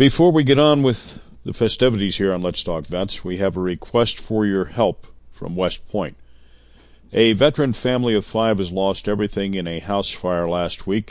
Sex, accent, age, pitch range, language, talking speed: male, American, 50-69, 80-110 Hz, English, 195 wpm